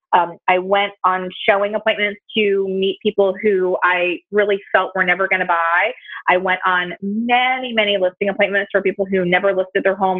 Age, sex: 30-49, female